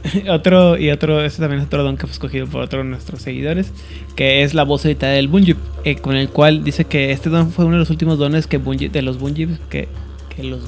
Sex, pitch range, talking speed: male, 135-170 Hz, 245 wpm